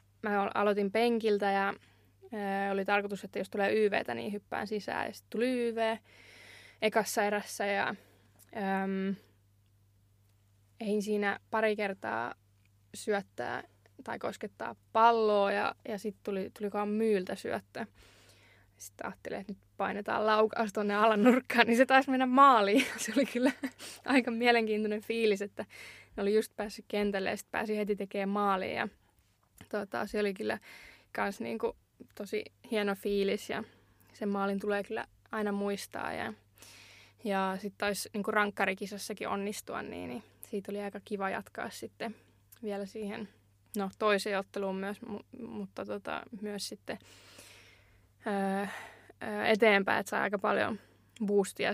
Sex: female